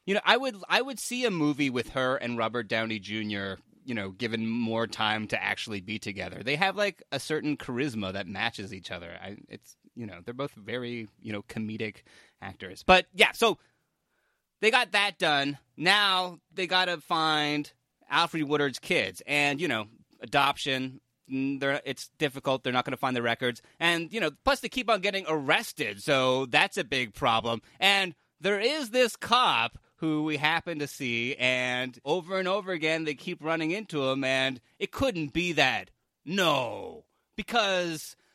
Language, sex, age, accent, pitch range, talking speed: English, male, 30-49, American, 125-185 Hz, 180 wpm